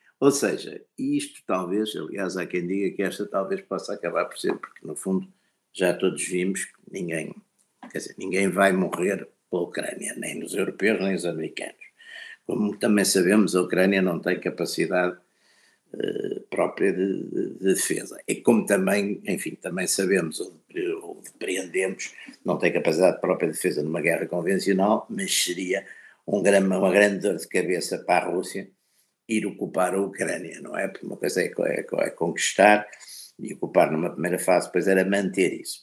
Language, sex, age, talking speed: Portuguese, male, 60-79, 175 wpm